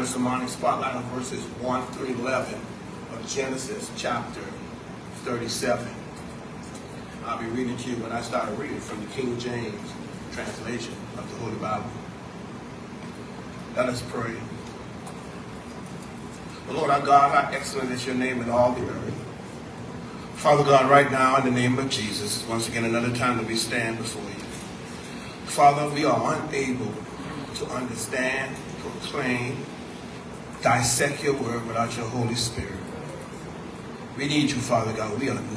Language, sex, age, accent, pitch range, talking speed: English, male, 40-59, American, 115-135 Hz, 140 wpm